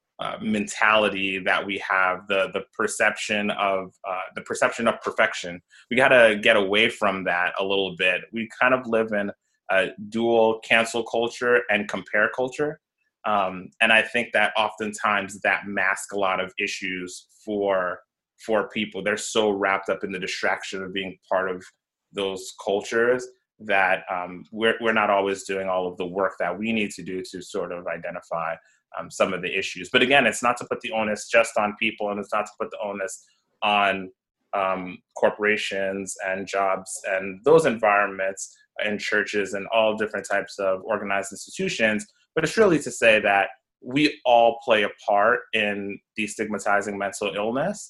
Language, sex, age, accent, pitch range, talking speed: English, male, 20-39, American, 95-110 Hz, 175 wpm